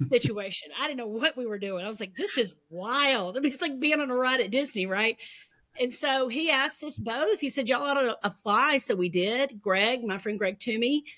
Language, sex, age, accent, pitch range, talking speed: English, female, 40-59, American, 175-230 Hz, 230 wpm